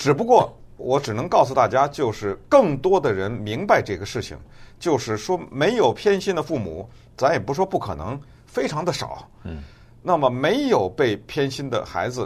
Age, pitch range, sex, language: 50-69, 110-160 Hz, male, Chinese